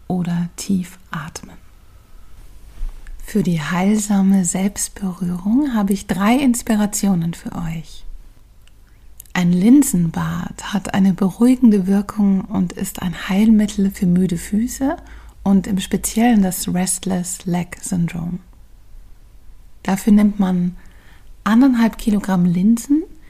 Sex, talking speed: female, 100 wpm